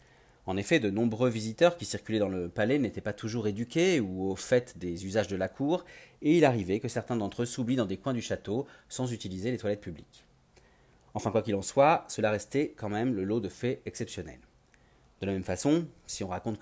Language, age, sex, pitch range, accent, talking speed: French, 40-59, male, 95-125 Hz, French, 220 wpm